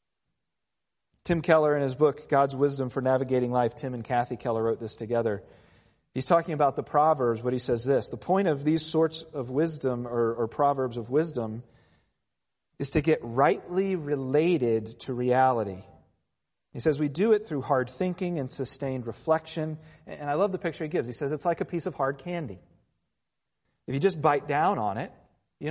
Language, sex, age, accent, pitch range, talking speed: English, male, 40-59, American, 130-165 Hz, 185 wpm